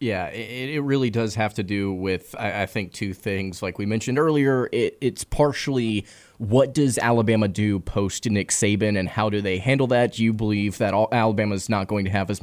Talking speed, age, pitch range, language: 210 wpm, 20-39, 105-130 Hz, English